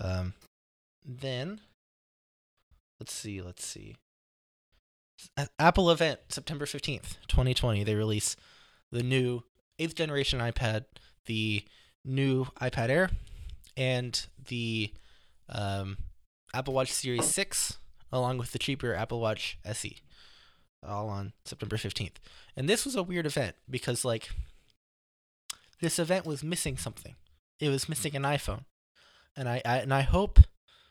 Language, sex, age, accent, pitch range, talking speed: English, male, 20-39, American, 100-130 Hz, 125 wpm